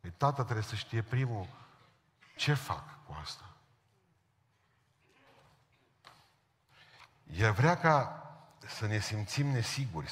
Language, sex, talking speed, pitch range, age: Romanian, male, 95 wpm, 95-130 Hz, 50-69